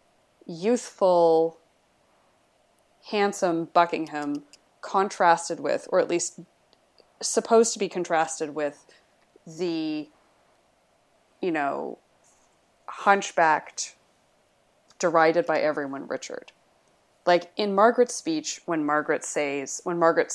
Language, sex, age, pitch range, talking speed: English, female, 20-39, 160-220 Hz, 90 wpm